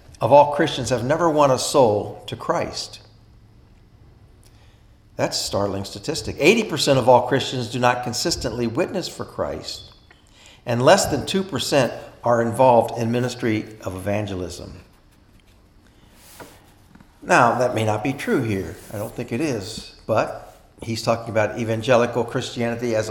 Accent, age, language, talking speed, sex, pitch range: American, 50-69, English, 140 wpm, male, 105-130 Hz